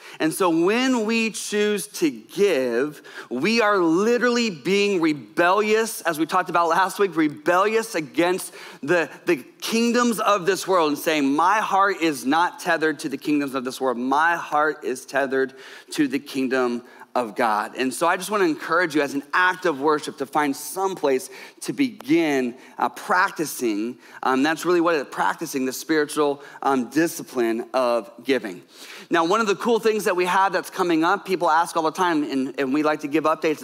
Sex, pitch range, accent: male, 145-195 Hz, American